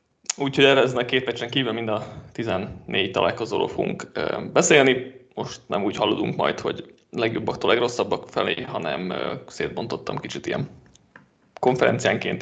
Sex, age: male, 20-39